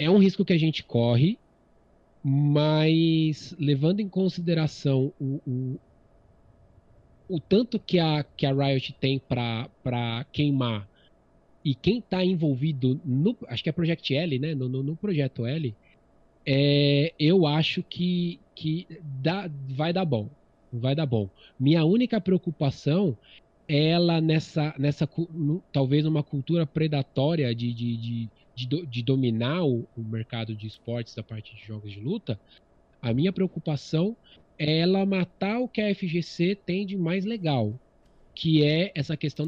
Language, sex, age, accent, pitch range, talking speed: Portuguese, male, 20-39, Brazilian, 125-165 Hz, 145 wpm